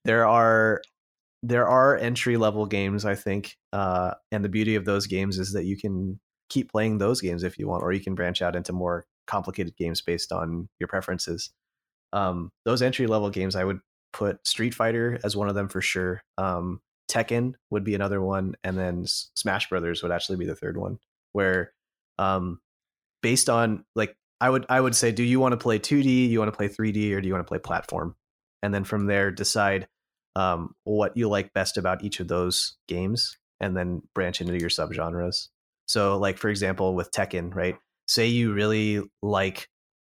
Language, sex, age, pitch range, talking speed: English, male, 30-49, 90-110 Hz, 195 wpm